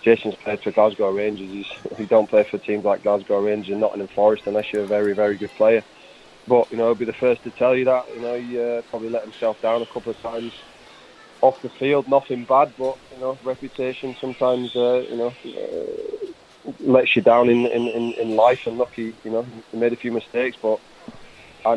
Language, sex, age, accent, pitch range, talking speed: English, male, 20-39, British, 110-120 Hz, 220 wpm